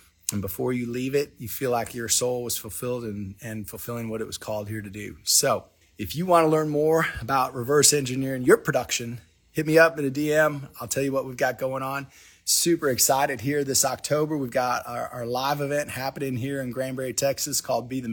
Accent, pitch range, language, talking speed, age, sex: American, 115-140 Hz, English, 220 wpm, 30-49, male